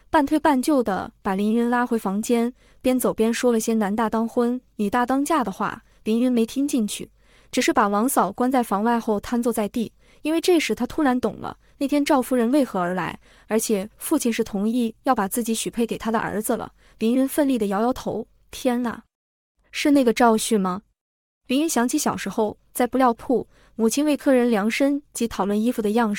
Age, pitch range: 20-39, 215-255 Hz